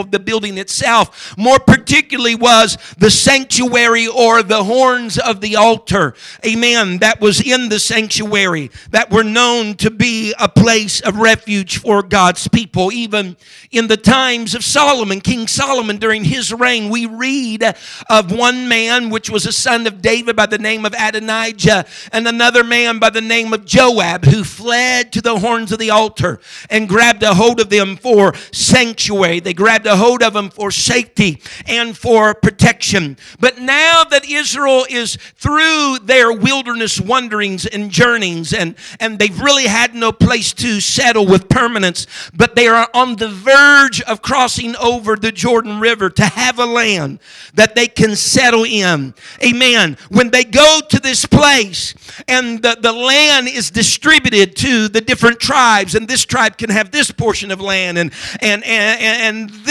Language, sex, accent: English, male, American